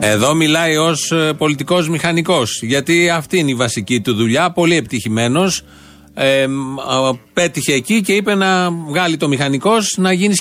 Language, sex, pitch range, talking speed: Greek, male, 125-175 Hz, 140 wpm